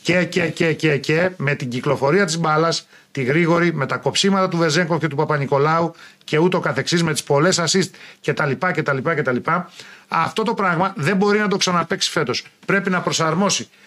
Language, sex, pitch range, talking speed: Greek, male, 160-205 Hz, 175 wpm